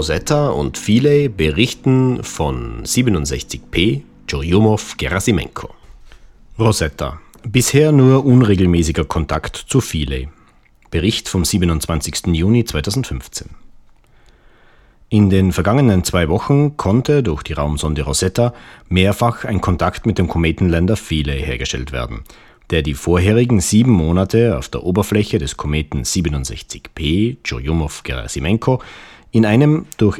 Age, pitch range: 40-59, 80-110 Hz